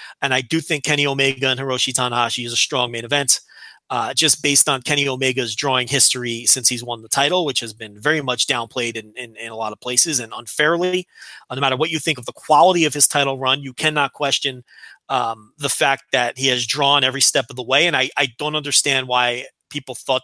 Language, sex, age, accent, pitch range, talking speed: English, male, 30-49, American, 130-175 Hz, 230 wpm